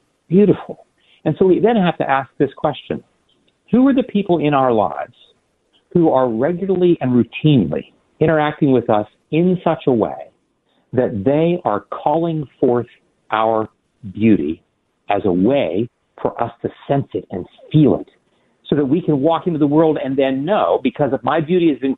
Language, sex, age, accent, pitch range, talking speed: English, male, 50-69, American, 130-170 Hz, 175 wpm